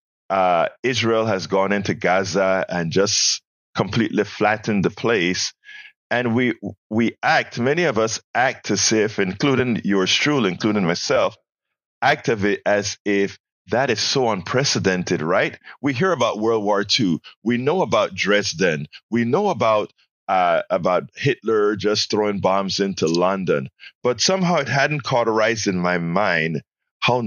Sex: male